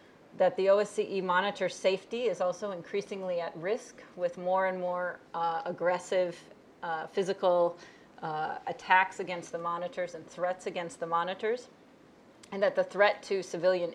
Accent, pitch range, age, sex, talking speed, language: American, 175-205 Hz, 30-49, female, 145 wpm, English